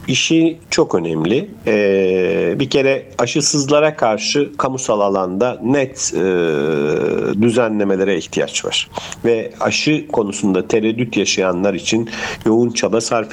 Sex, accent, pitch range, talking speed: male, native, 95-125 Hz, 110 wpm